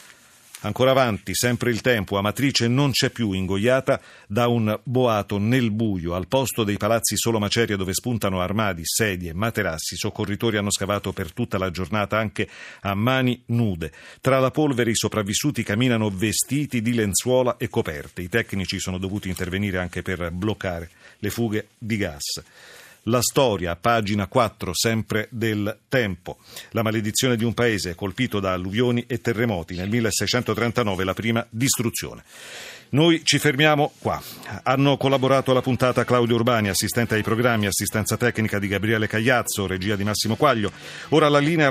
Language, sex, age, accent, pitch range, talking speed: Italian, male, 40-59, native, 100-125 Hz, 155 wpm